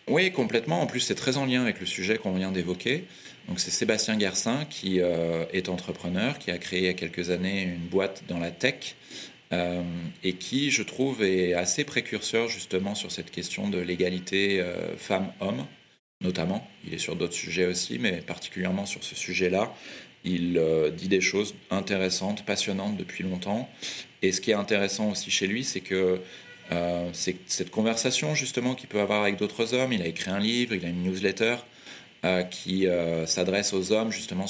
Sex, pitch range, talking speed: male, 90-110 Hz, 190 wpm